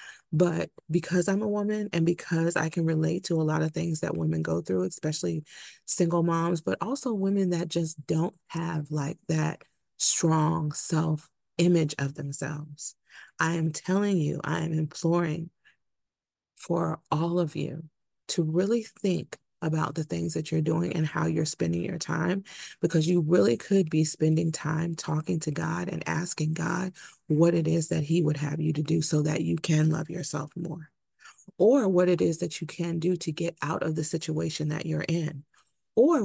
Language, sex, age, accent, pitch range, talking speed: English, female, 30-49, American, 155-180 Hz, 180 wpm